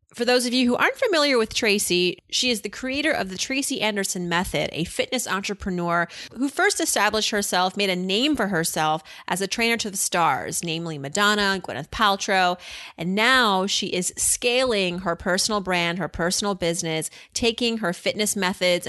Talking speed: 175 wpm